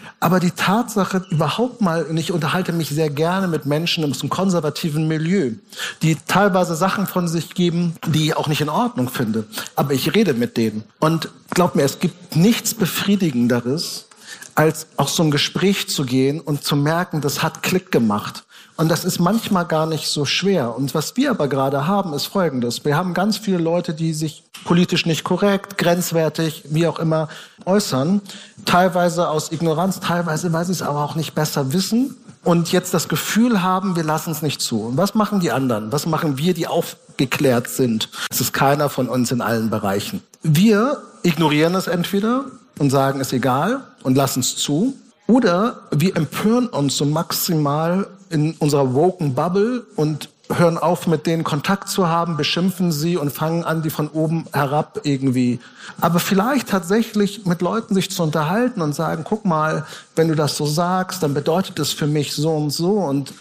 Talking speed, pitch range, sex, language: 185 wpm, 145-190 Hz, male, German